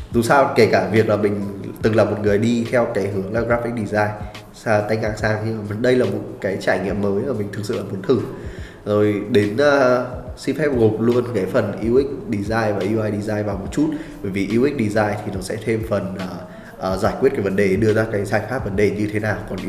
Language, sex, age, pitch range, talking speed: Vietnamese, male, 20-39, 100-115 Hz, 250 wpm